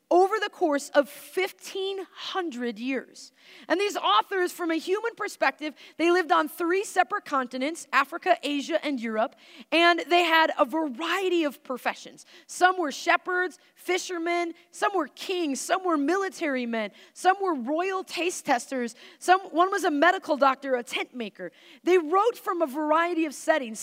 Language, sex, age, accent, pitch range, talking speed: English, female, 30-49, American, 275-355 Hz, 155 wpm